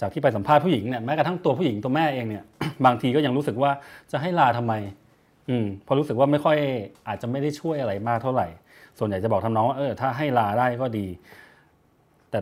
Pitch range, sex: 110-140 Hz, male